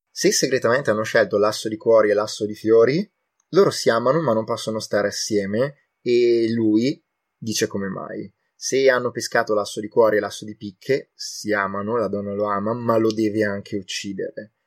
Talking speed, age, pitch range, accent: 185 wpm, 20-39, 105-115 Hz, native